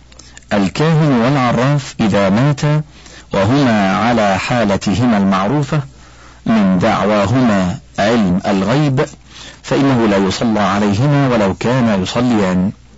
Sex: male